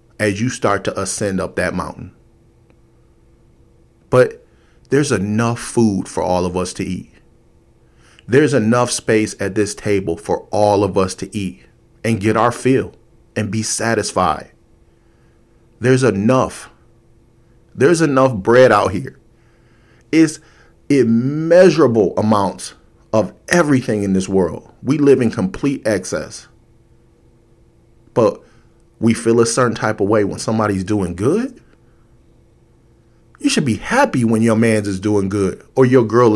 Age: 40-59